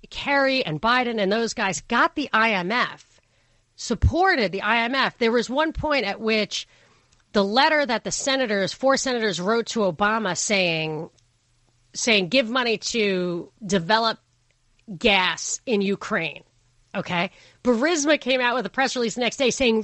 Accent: American